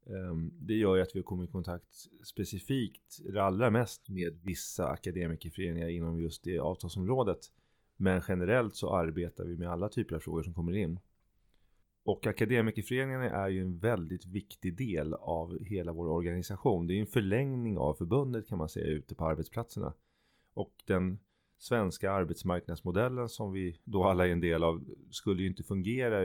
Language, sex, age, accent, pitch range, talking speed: Swedish, male, 30-49, native, 85-110 Hz, 165 wpm